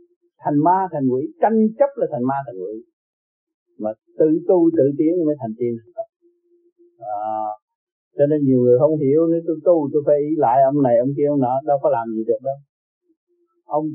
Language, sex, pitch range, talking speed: Vietnamese, male, 145-240 Hz, 200 wpm